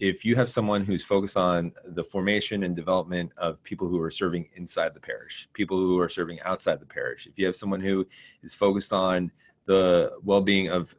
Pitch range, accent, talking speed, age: 85-100 Hz, American, 200 wpm, 30-49